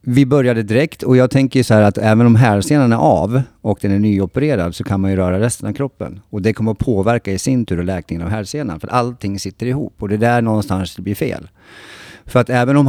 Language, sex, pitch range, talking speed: Swedish, male, 90-115 Hz, 255 wpm